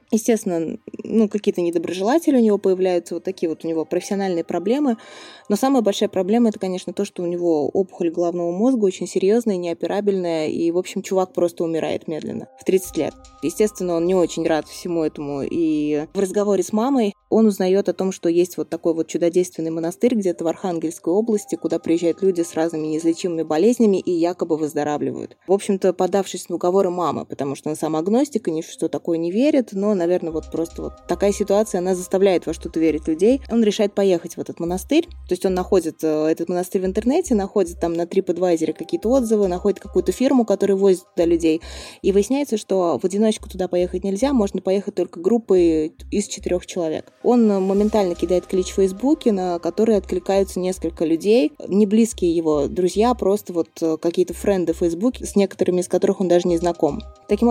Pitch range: 170-205 Hz